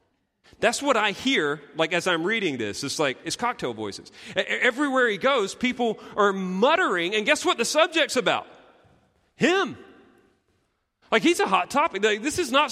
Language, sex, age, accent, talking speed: English, male, 40-59, American, 175 wpm